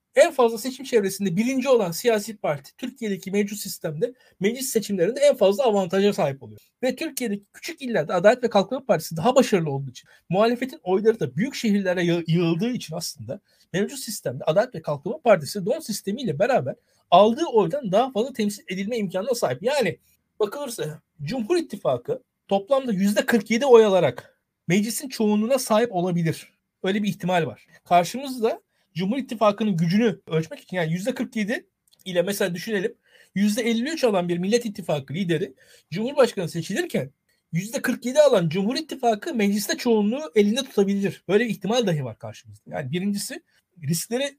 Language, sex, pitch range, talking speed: Turkish, male, 180-245 Hz, 145 wpm